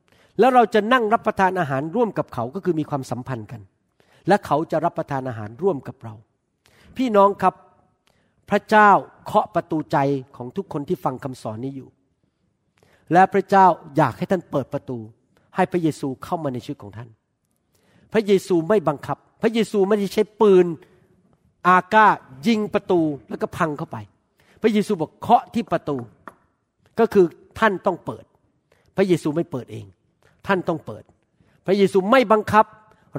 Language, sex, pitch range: Thai, male, 130-195 Hz